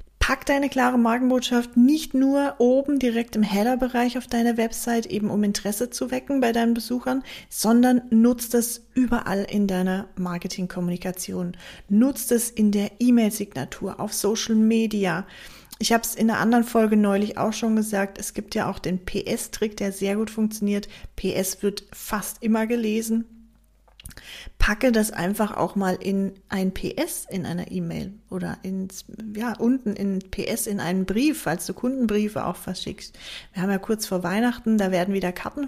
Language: German